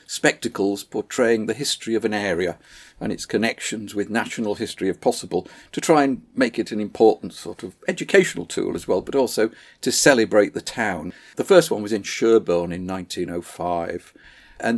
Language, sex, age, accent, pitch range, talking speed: English, male, 50-69, British, 100-135 Hz, 175 wpm